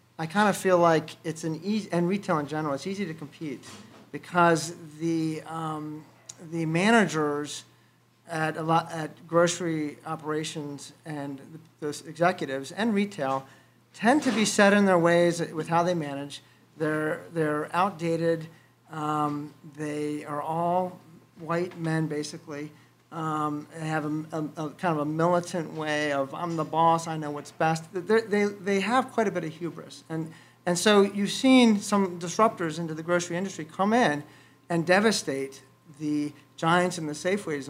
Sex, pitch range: male, 150-175 Hz